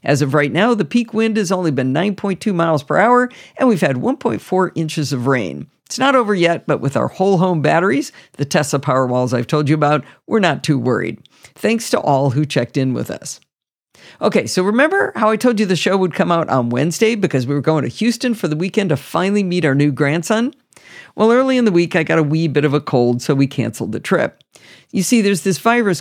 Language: English